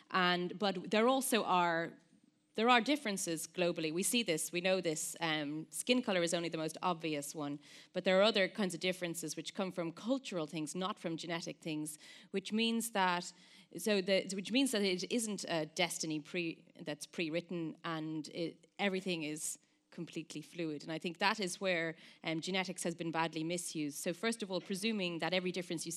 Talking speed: 190 wpm